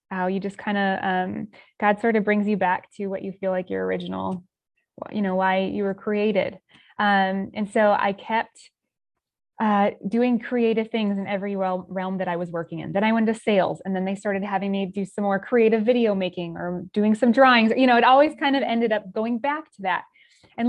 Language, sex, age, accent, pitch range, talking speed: English, female, 20-39, American, 190-230 Hz, 220 wpm